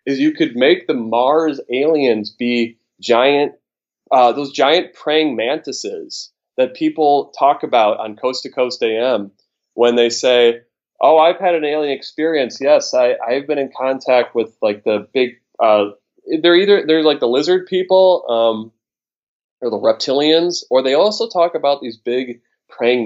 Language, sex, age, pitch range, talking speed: English, male, 20-39, 110-170 Hz, 160 wpm